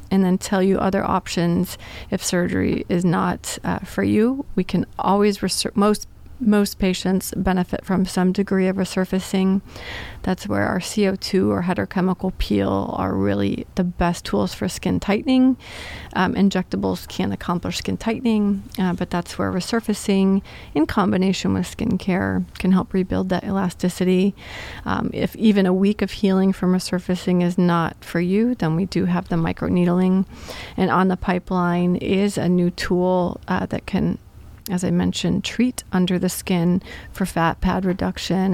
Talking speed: 160 wpm